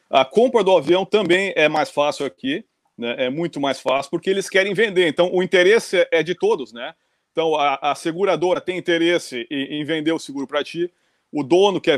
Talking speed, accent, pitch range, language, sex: 205 wpm, Brazilian, 145-200 Hz, Portuguese, male